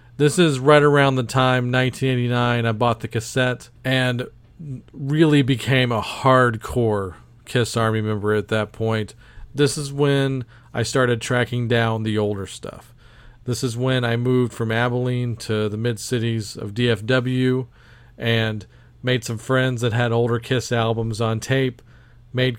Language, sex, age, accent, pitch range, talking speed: English, male, 40-59, American, 110-125 Hz, 150 wpm